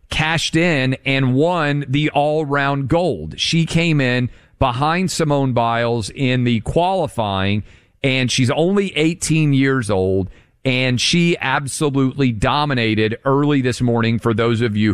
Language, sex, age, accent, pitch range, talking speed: English, male, 40-59, American, 120-155 Hz, 135 wpm